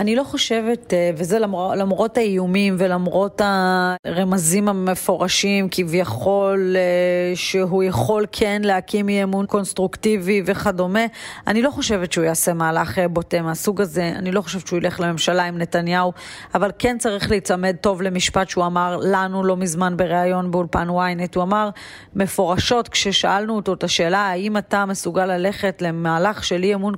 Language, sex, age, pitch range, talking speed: Hebrew, female, 30-49, 180-210 Hz, 145 wpm